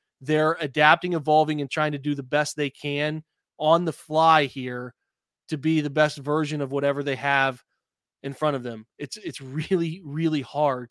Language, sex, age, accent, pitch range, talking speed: English, male, 20-39, American, 140-160 Hz, 180 wpm